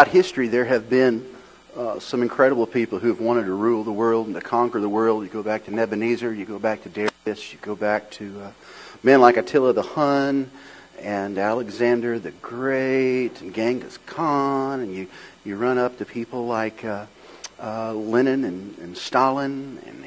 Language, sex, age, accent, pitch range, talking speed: English, male, 40-59, American, 110-135 Hz, 185 wpm